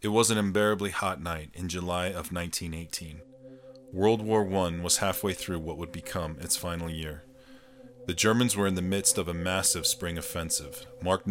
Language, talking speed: English, 180 wpm